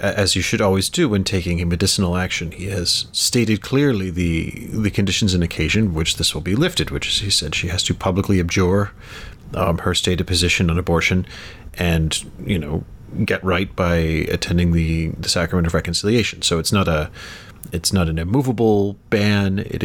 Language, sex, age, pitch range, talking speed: English, male, 30-49, 85-105 Hz, 185 wpm